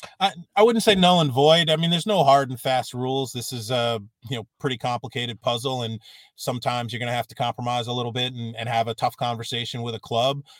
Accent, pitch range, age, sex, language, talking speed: American, 115-140 Hz, 30-49, male, English, 245 wpm